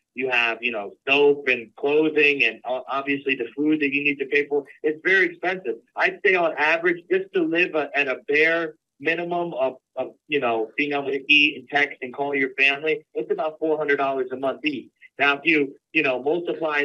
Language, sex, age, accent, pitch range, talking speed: English, male, 40-59, American, 140-170 Hz, 205 wpm